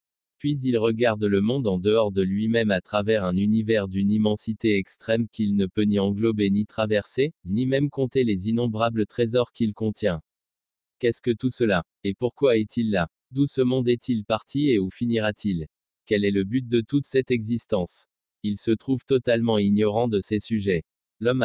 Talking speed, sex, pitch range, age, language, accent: 180 wpm, male, 100-120 Hz, 20-39, French, French